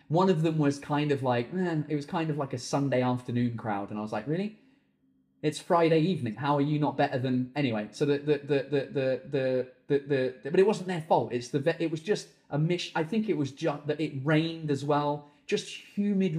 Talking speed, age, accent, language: 240 wpm, 30-49, British, English